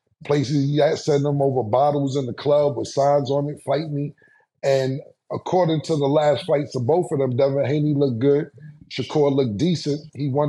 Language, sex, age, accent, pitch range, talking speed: English, male, 30-49, American, 125-145 Hz, 200 wpm